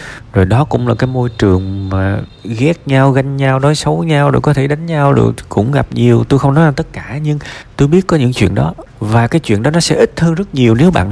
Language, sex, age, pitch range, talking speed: Vietnamese, male, 20-39, 95-130 Hz, 265 wpm